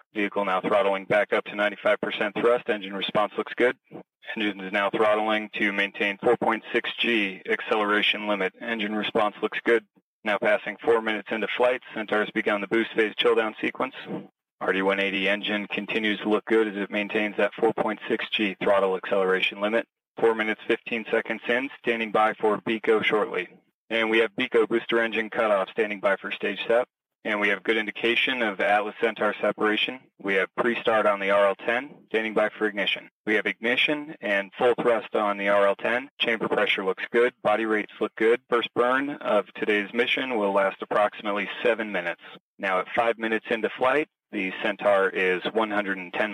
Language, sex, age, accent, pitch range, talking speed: English, male, 30-49, American, 100-115 Hz, 170 wpm